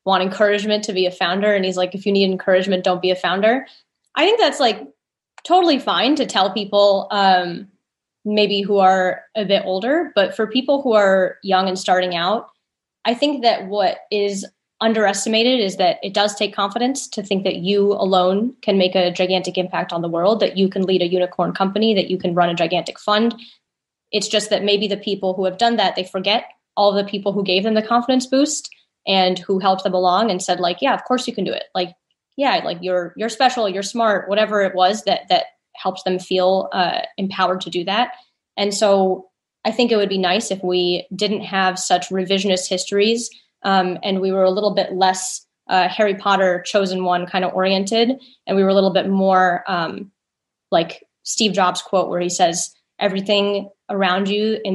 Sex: female